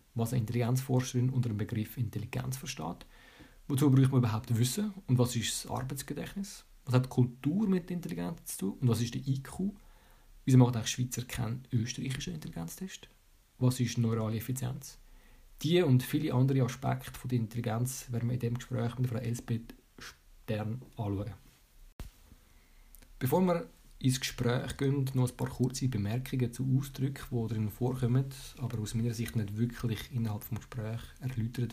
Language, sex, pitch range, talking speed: German, male, 115-130 Hz, 160 wpm